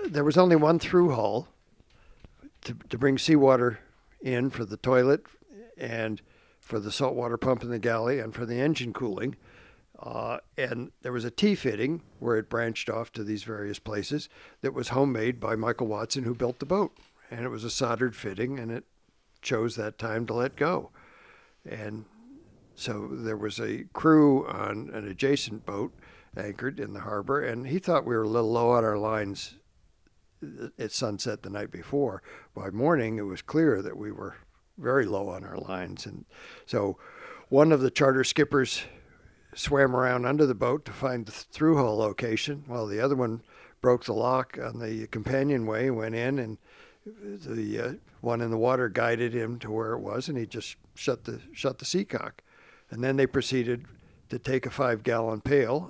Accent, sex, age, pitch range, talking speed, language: American, male, 60-79, 110-135 Hz, 180 wpm, English